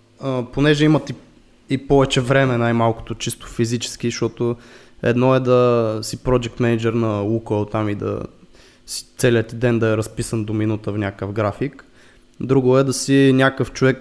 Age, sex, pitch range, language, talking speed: 20-39, male, 115-135 Hz, Bulgarian, 165 wpm